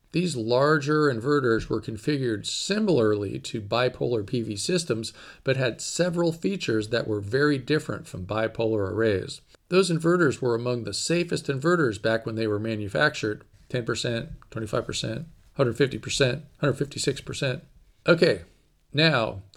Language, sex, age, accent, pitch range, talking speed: English, male, 40-59, American, 115-150 Hz, 120 wpm